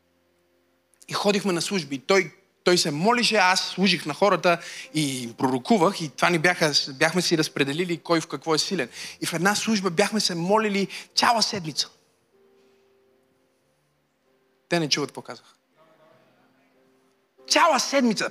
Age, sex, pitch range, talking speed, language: 30-49, male, 145-225 Hz, 135 wpm, Bulgarian